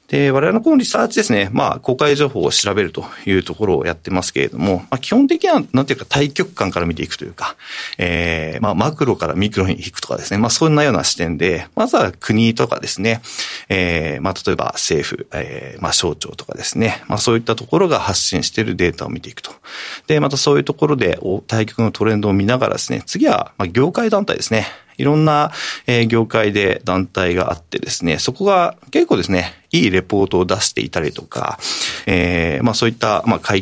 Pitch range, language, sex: 95-150 Hz, Japanese, male